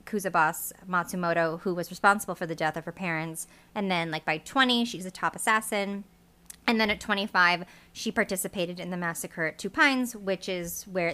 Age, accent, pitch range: 30-49, American, 170-210 Hz